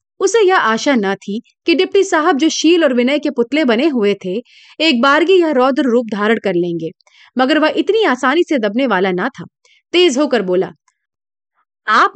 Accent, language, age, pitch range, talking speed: native, Hindi, 30-49, 220-315 Hz, 185 wpm